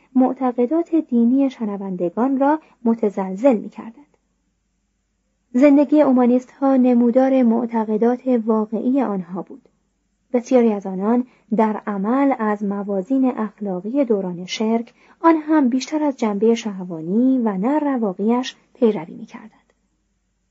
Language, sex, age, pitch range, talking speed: Persian, female, 30-49, 205-270 Hz, 100 wpm